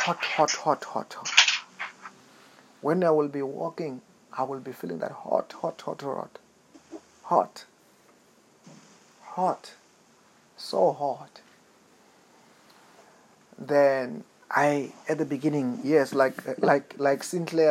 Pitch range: 130-160 Hz